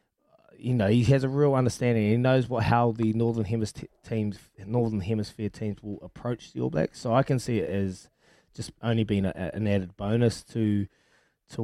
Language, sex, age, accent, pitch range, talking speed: English, male, 20-39, Australian, 105-120 Hz, 200 wpm